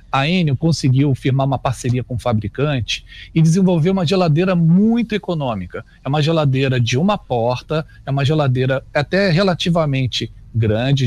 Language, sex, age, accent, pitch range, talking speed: Portuguese, male, 40-59, Brazilian, 110-155 Hz, 145 wpm